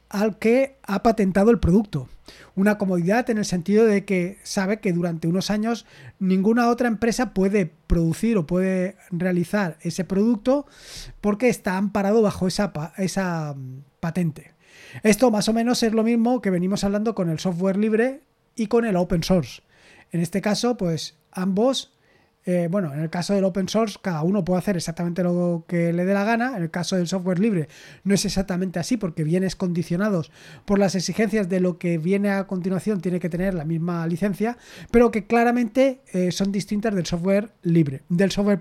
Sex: male